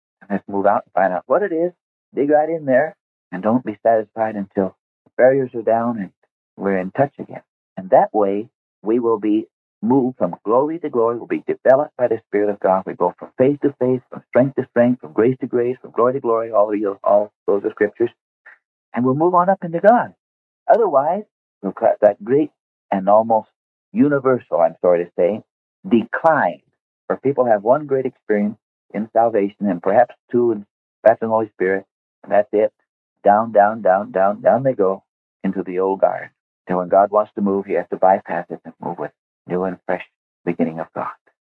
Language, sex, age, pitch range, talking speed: English, male, 50-69, 95-130 Hz, 200 wpm